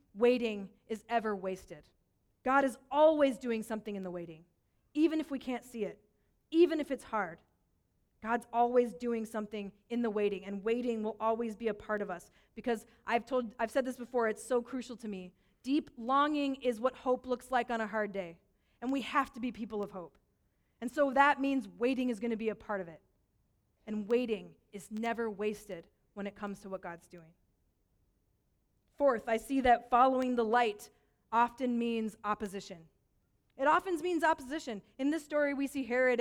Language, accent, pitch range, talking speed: English, American, 215-275 Hz, 190 wpm